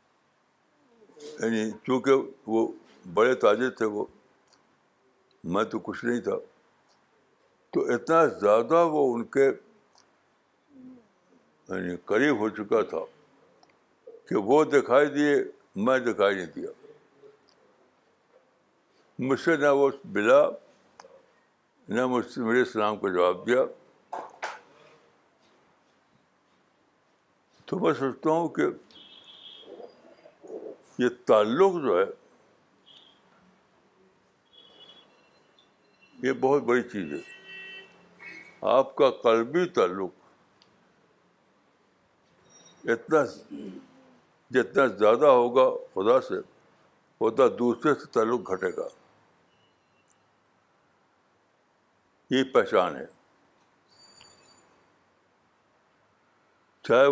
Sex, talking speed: male, 80 wpm